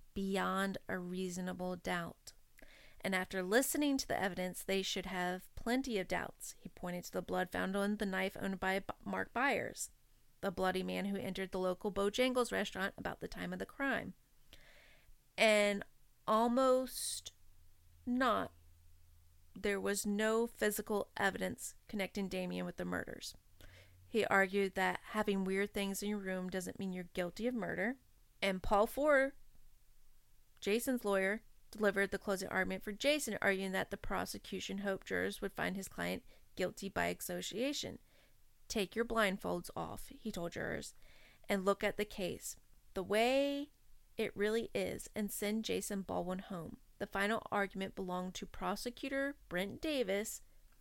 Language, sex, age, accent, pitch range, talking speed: English, female, 30-49, American, 185-215 Hz, 150 wpm